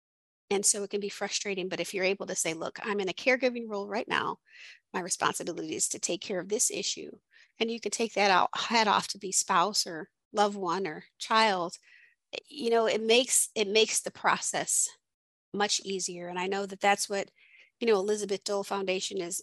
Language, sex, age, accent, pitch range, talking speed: English, female, 30-49, American, 180-215 Hz, 205 wpm